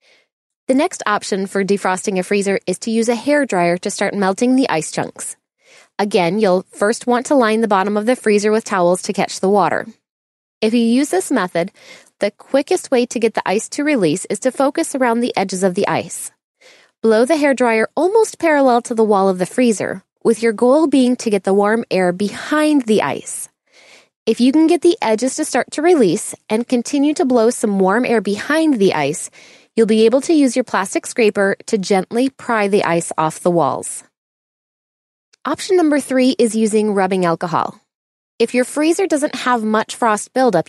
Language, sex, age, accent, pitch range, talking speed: English, female, 20-39, American, 200-270 Hz, 195 wpm